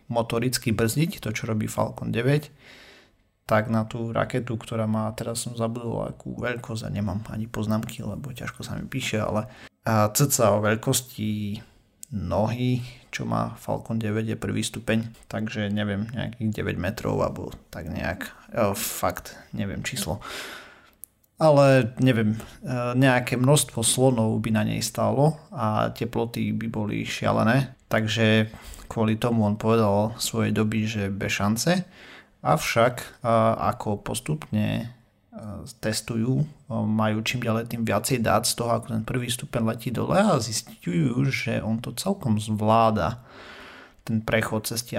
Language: Slovak